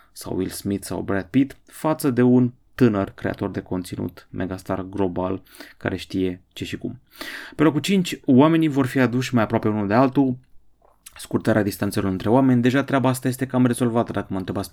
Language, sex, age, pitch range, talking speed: Romanian, male, 20-39, 100-130 Hz, 185 wpm